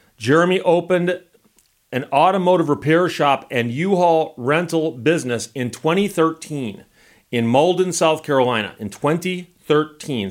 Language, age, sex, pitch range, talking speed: English, 40-59, male, 135-185 Hz, 105 wpm